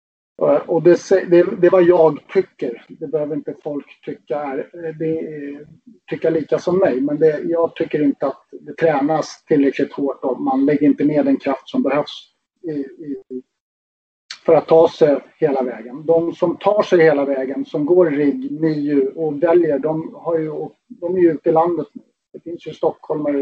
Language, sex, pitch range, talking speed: Swedish, male, 145-175 Hz, 185 wpm